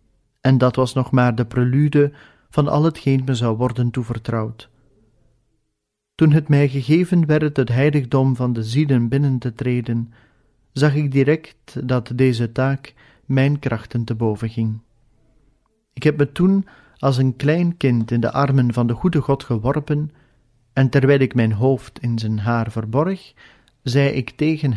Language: Dutch